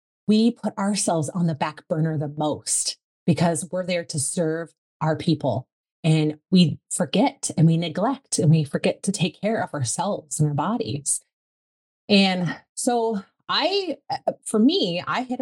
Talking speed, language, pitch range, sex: 155 wpm, English, 155-225 Hz, female